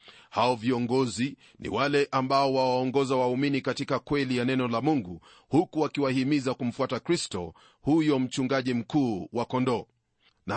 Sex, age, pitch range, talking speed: male, 40-59, 130-150 Hz, 130 wpm